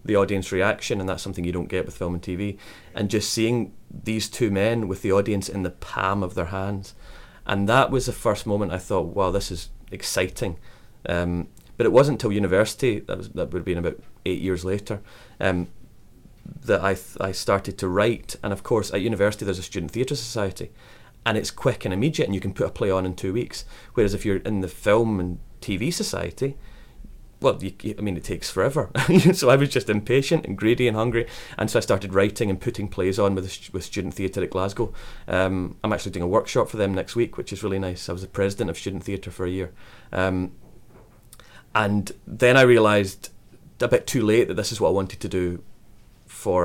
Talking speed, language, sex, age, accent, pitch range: 220 wpm, English, male, 30-49, British, 95-110 Hz